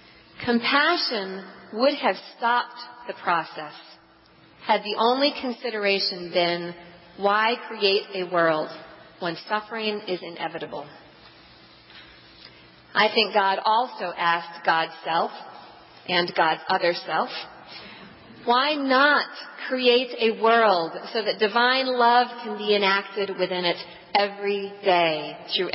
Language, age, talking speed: English, 40-59, 110 wpm